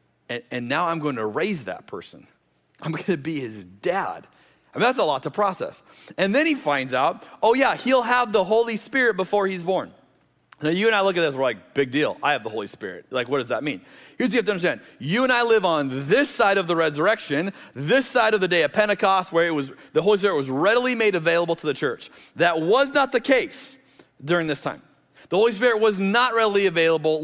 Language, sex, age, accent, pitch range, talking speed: English, male, 30-49, American, 155-220 Hz, 240 wpm